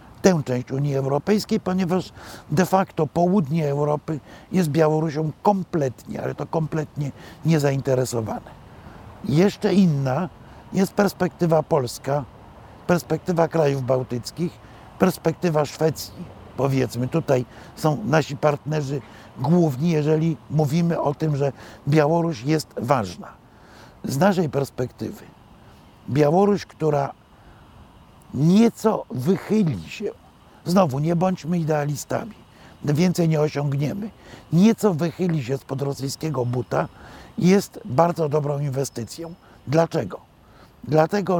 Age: 50-69